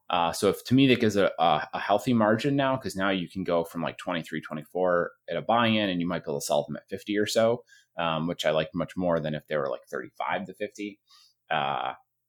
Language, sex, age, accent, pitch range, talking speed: English, male, 30-49, American, 95-125 Hz, 245 wpm